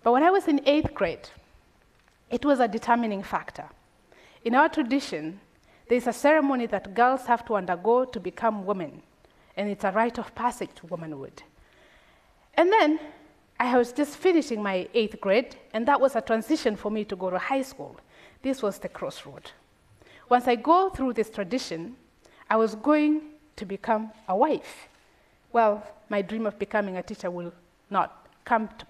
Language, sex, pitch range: Korean, female, 205-270 Hz